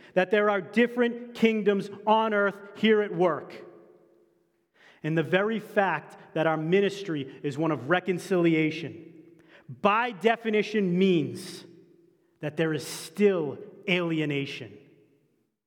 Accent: American